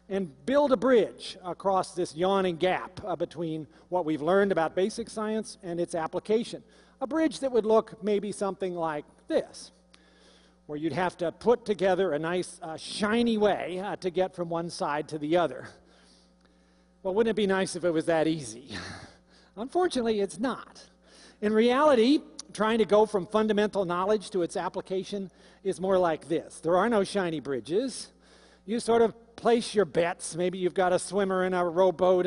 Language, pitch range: Chinese, 170-210 Hz